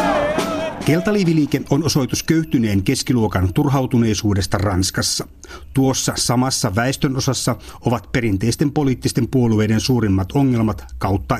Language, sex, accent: Finnish, male, native